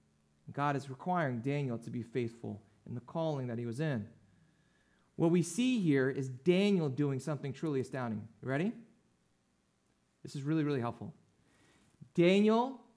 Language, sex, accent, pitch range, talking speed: English, male, American, 140-230 Hz, 150 wpm